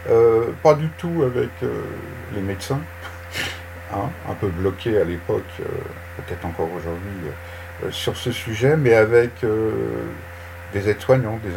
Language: French